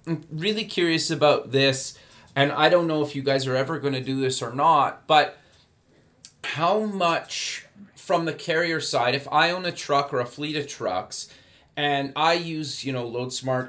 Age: 30-49